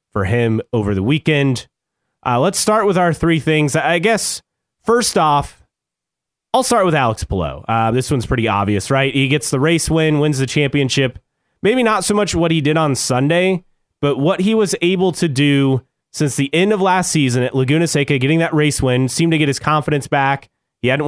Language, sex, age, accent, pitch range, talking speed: English, male, 30-49, American, 125-165 Hz, 205 wpm